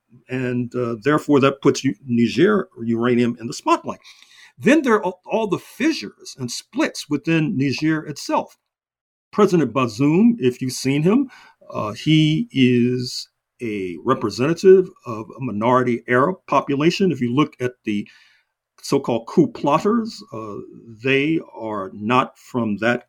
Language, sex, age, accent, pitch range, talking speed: English, male, 50-69, American, 120-165 Hz, 135 wpm